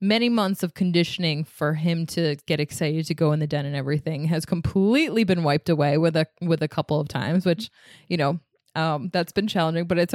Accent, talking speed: American, 220 wpm